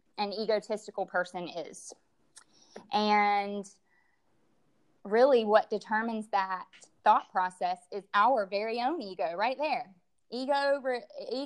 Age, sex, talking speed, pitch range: 20-39, female, 100 wpm, 195-230 Hz